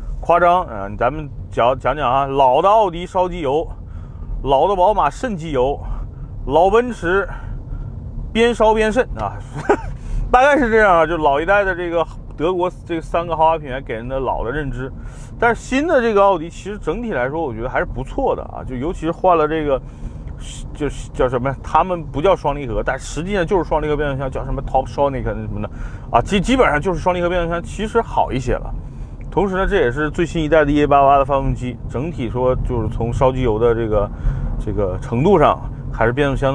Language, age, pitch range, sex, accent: Chinese, 30-49, 120-175 Hz, male, native